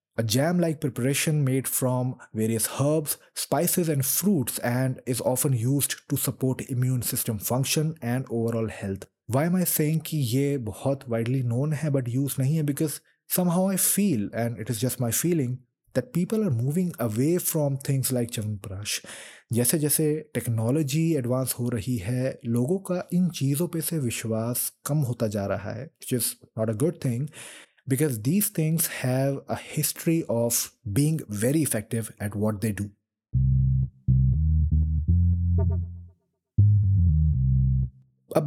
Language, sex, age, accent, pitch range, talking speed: English, male, 30-49, Indian, 115-150 Hz, 140 wpm